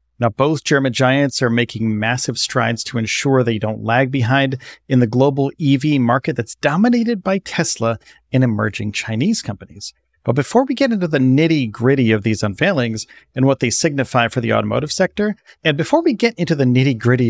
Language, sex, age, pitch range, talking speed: English, male, 40-59, 110-145 Hz, 180 wpm